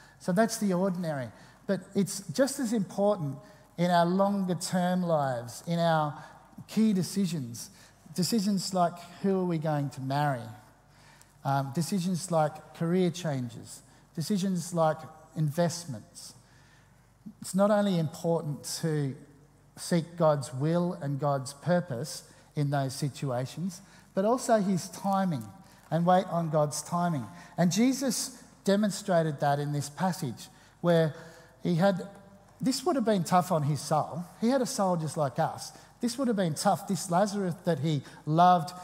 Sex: male